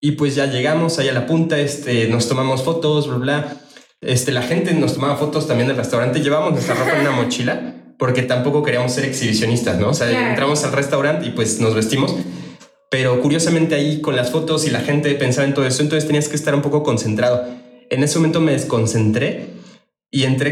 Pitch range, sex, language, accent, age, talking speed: 125-145 Hz, male, Spanish, Mexican, 20-39, 205 wpm